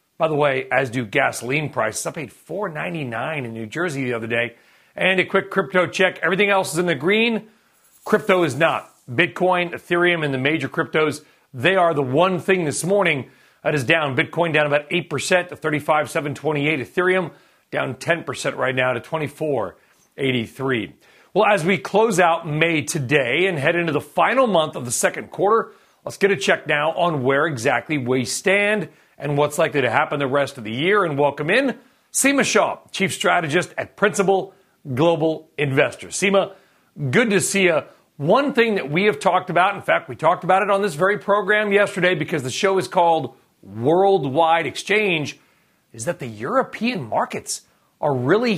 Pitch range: 145-195 Hz